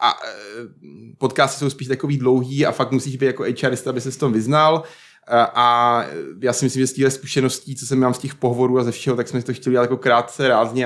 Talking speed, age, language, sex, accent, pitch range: 225 wpm, 30-49, Czech, male, native, 120-135 Hz